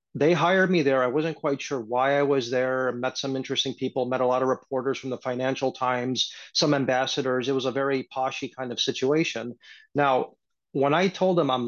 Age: 30-49